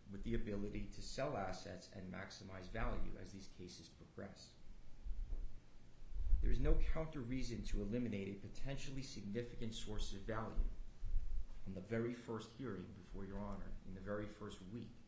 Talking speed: 150 wpm